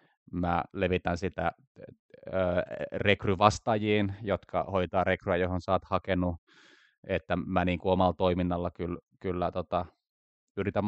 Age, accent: 20-39, native